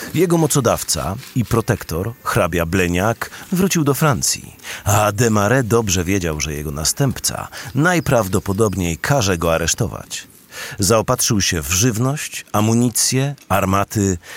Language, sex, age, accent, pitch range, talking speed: Polish, male, 40-59, native, 95-120 Hz, 110 wpm